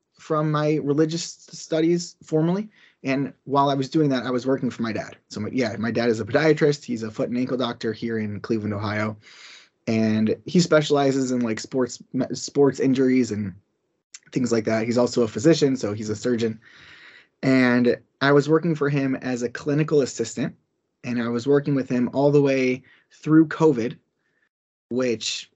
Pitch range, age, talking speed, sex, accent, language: 115-140 Hz, 20-39, 180 wpm, male, American, English